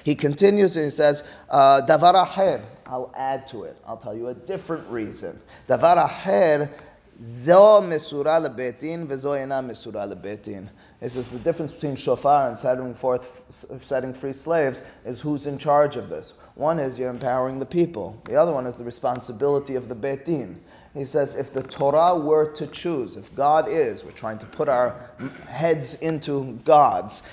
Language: English